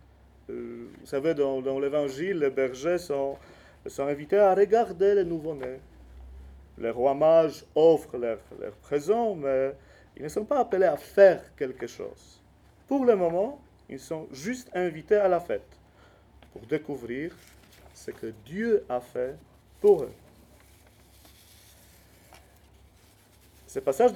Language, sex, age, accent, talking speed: French, male, 40-59, French, 125 wpm